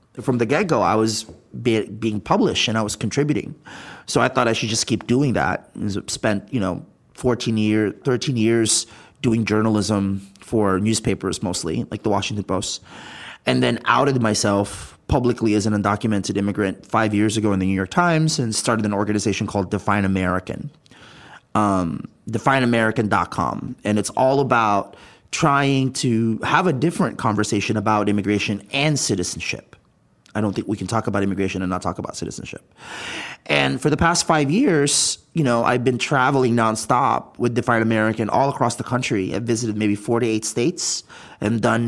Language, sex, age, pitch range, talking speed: English, male, 30-49, 105-135 Hz, 170 wpm